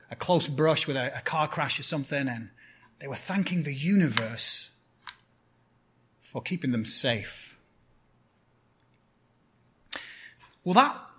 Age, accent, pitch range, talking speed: 30-49, British, 130-175 Hz, 120 wpm